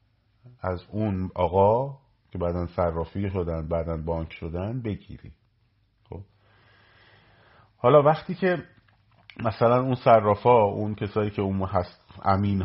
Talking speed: 115 wpm